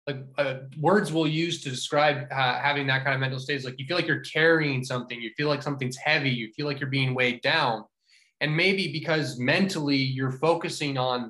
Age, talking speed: 20-39, 220 wpm